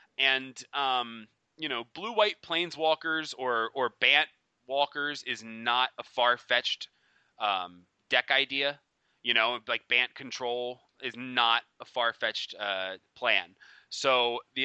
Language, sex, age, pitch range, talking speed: English, male, 20-39, 110-140 Hz, 135 wpm